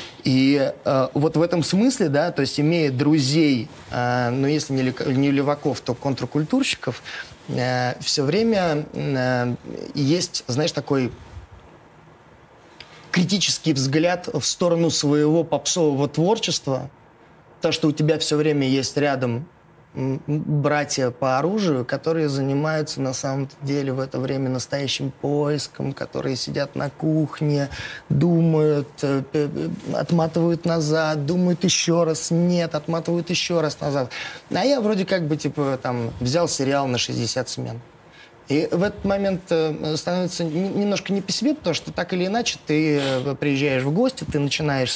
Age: 20-39